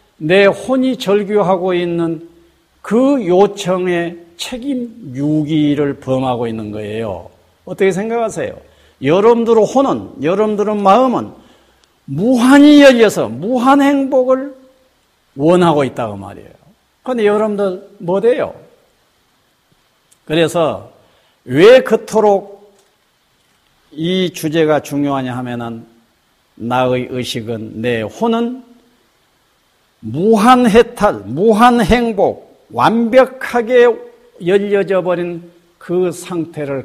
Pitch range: 145-235 Hz